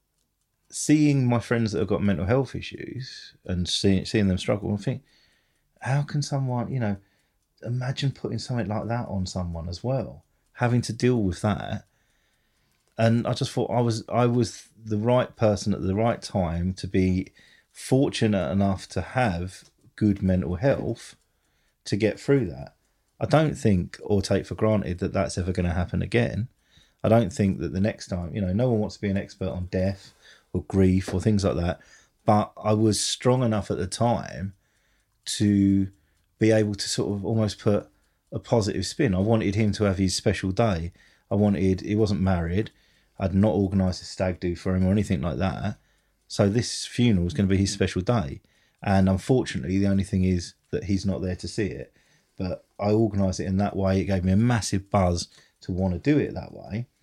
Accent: British